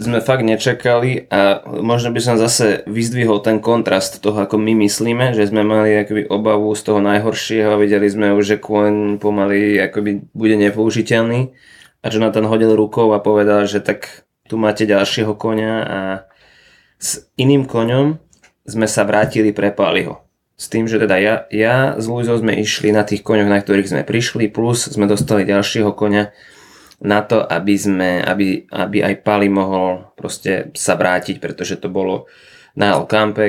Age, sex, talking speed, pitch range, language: 20-39, male, 165 wpm, 100-115 Hz, Slovak